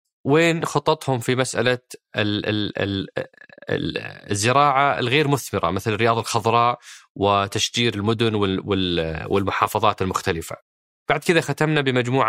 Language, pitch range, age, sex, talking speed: Arabic, 105-125 Hz, 20-39, male, 90 wpm